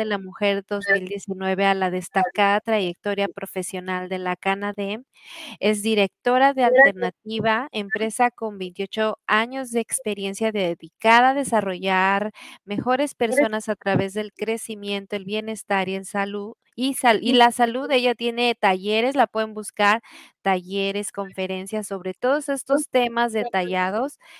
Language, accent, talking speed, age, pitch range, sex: English, Mexican, 125 wpm, 30-49, 200-240 Hz, female